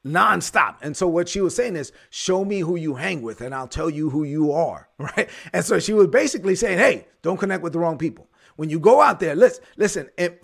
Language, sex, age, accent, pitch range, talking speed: English, male, 30-49, American, 160-205 Hz, 245 wpm